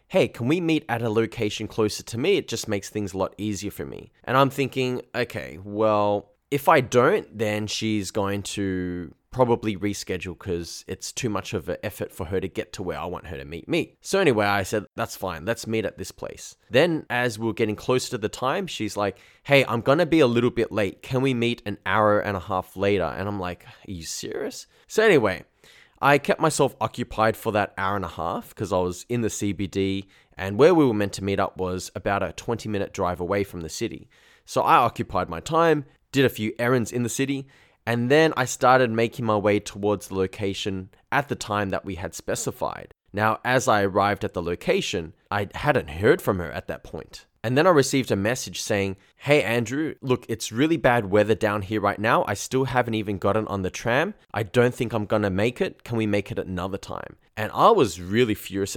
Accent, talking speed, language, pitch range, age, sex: Australian, 225 wpm, English, 100-125 Hz, 10-29, male